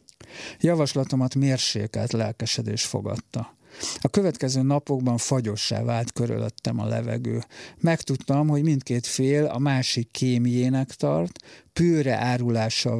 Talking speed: 100 wpm